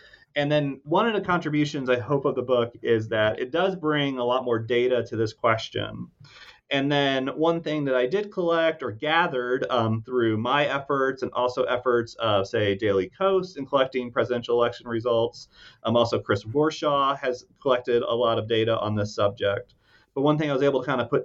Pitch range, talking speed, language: 125-170 Hz, 205 wpm, English